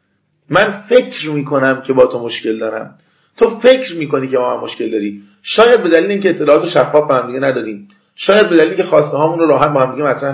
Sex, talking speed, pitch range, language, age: male, 210 wpm, 125-175 Hz, Persian, 40-59